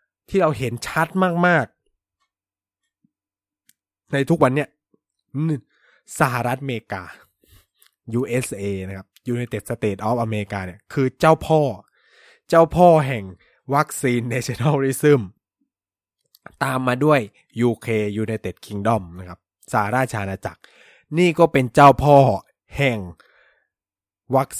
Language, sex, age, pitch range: Thai, male, 20-39, 110-155 Hz